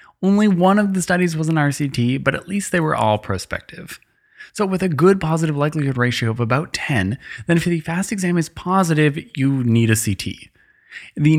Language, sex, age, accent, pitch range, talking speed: English, male, 20-39, American, 120-175 Hz, 195 wpm